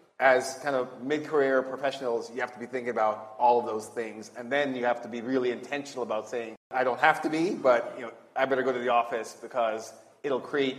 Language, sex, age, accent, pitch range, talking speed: English, male, 30-49, American, 115-130 Hz, 235 wpm